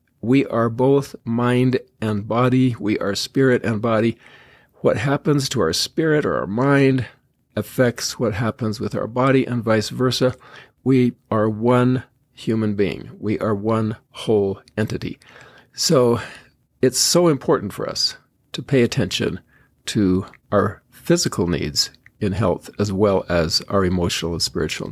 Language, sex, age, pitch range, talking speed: English, male, 50-69, 105-130 Hz, 145 wpm